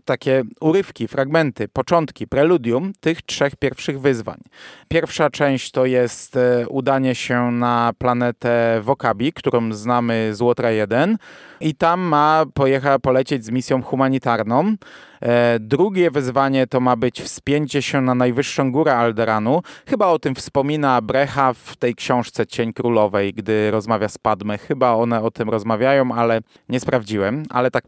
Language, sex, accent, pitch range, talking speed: Polish, male, native, 120-145 Hz, 140 wpm